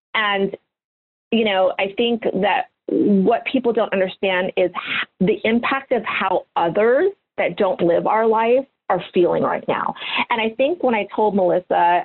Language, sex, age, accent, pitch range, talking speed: English, female, 40-59, American, 180-230 Hz, 160 wpm